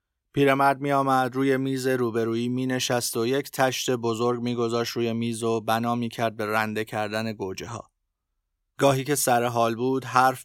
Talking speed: 155 wpm